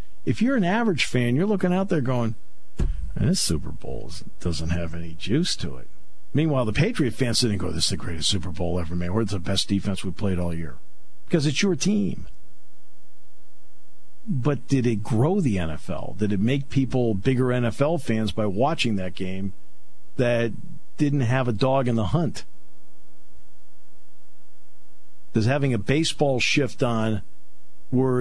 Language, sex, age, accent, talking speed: English, male, 50-69, American, 165 wpm